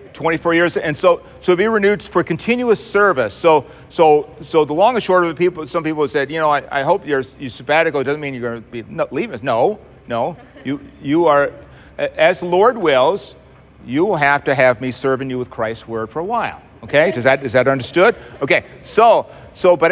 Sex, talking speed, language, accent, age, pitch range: male, 220 wpm, English, American, 40-59, 125-150 Hz